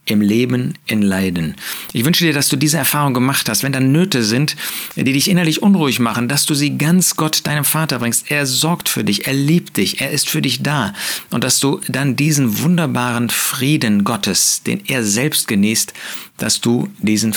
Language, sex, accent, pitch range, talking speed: German, male, German, 105-145 Hz, 195 wpm